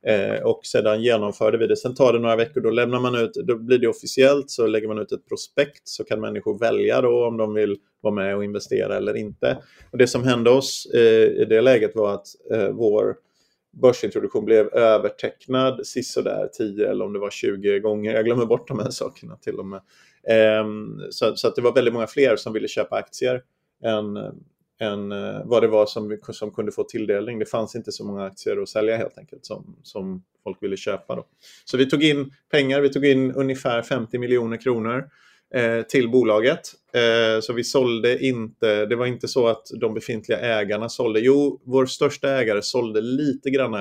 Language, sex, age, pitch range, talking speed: Swedish, male, 30-49, 110-140 Hz, 205 wpm